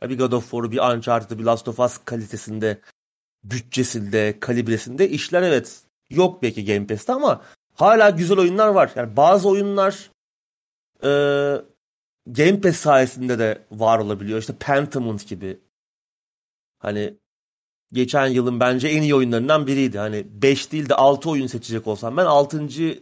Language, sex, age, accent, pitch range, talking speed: Turkish, male, 30-49, native, 115-140 Hz, 140 wpm